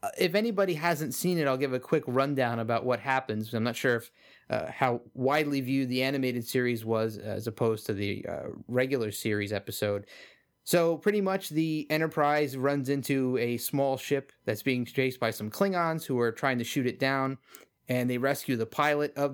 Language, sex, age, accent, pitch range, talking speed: English, male, 30-49, American, 125-150 Hz, 190 wpm